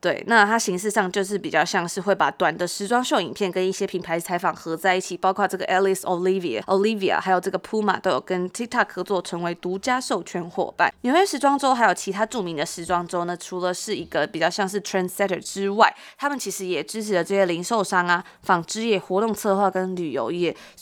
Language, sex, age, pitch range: Chinese, female, 20-39, 180-210 Hz